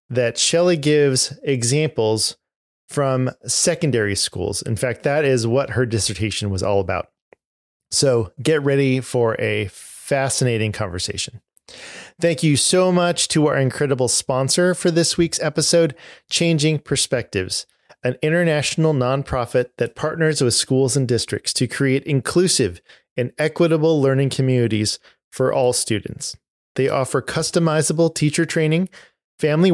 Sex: male